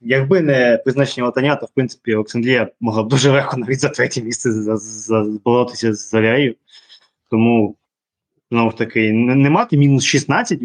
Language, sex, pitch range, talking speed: Ukrainian, male, 110-140 Hz, 185 wpm